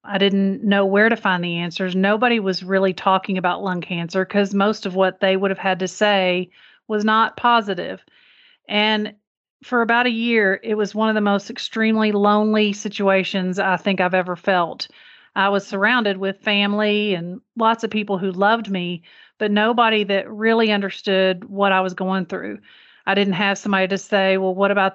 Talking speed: 190 wpm